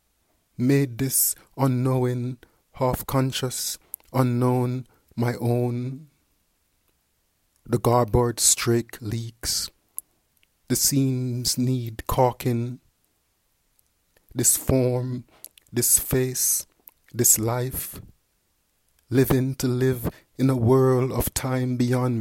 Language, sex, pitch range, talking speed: English, male, 110-130 Hz, 80 wpm